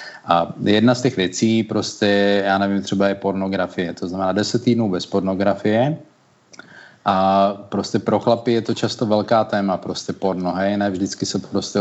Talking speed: 165 wpm